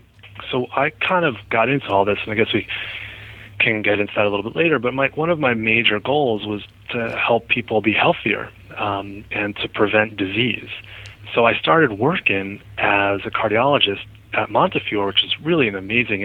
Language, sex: English, male